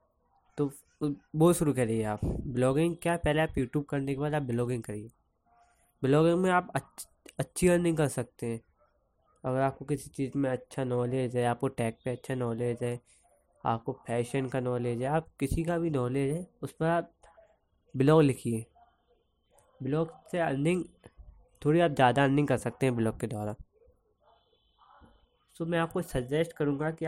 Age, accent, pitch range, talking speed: 20-39, native, 120-155 Hz, 165 wpm